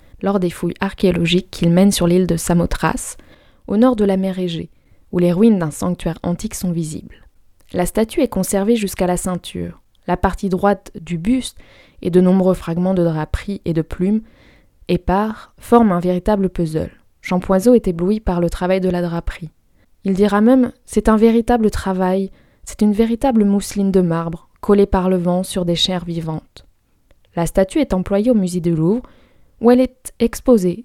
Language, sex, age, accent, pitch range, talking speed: French, female, 20-39, French, 175-215 Hz, 180 wpm